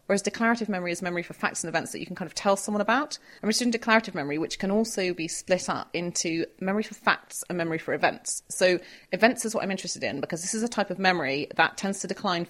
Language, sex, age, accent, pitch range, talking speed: English, female, 30-49, British, 170-200 Hz, 260 wpm